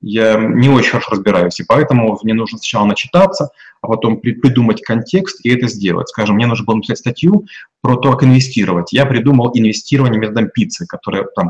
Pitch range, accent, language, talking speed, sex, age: 110-145 Hz, native, Russian, 185 wpm, male, 30-49